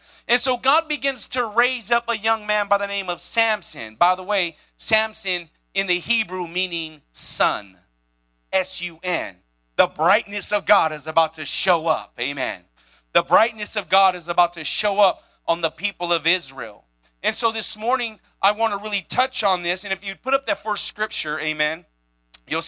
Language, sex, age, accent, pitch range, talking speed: English, male, 30-49, American, 150-215 Hz, 185 wpm